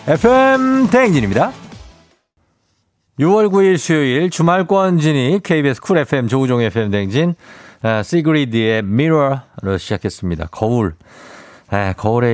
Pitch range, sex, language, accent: 100-145 Hz, male, Korean, native